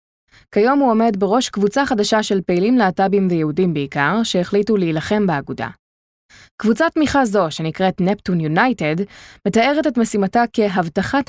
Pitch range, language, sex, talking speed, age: 175-230 Hz, Hebrew, female, 130 wpm, 20-39